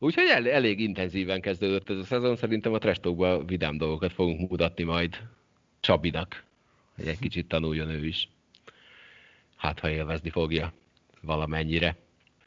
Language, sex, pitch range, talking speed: Hungarian, male, 80-100 Hz, 130 wpm